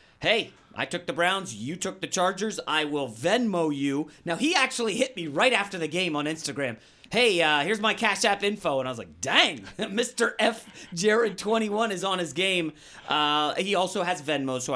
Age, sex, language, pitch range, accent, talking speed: 30-49, male, English, 150-195 Hz, American, 205 wpm